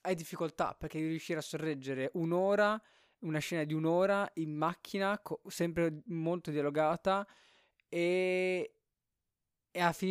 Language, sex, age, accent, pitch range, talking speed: Italian, male, 20-39, native, 130-160 Hz, 125 wpm